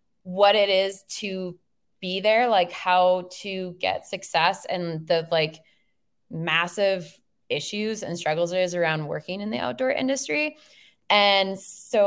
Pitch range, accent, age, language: 160-185 Hz, American, 20-39, English